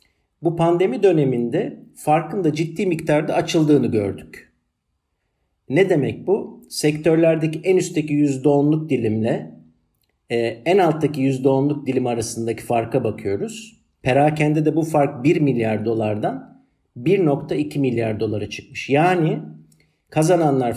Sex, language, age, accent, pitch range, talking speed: male, Turkish, 50-69, native, 115-155 Hz, 105 wpm